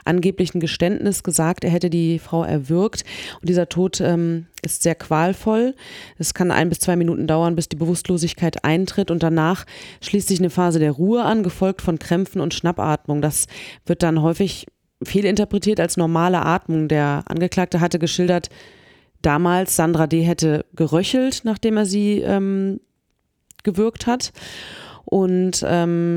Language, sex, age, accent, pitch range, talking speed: German, female, 30-49, German, 165-195 Hz, 145 wpm